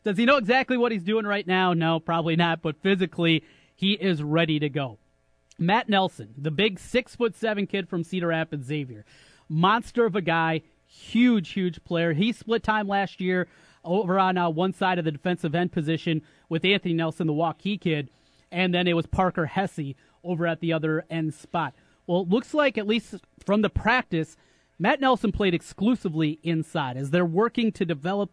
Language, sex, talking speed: English, male, 190 wpm